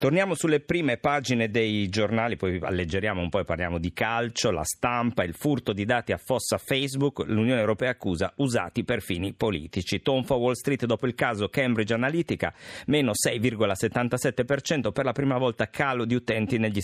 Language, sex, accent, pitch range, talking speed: Italian, male, native, 100-130 Hz, 170 wpm